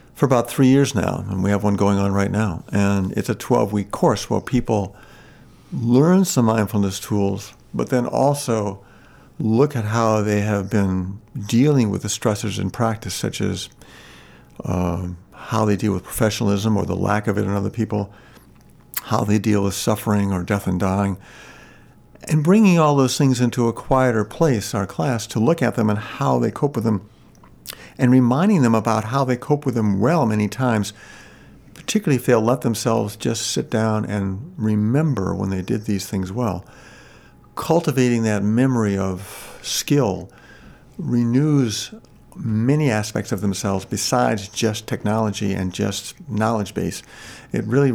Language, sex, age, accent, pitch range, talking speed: English, male, 50-69, American, 100-125 Hz, 165 wpm